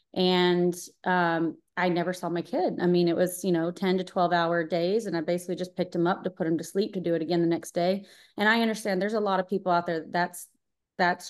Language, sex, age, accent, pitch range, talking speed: English, female, 30-49, American, 175-205 Hz, 265 wpm